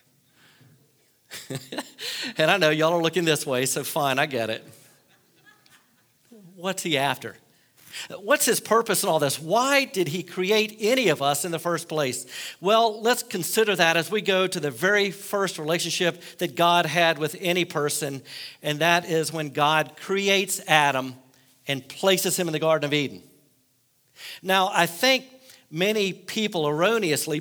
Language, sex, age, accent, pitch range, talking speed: English, male, 50-69, American, 155-190 Hz, 160 wpm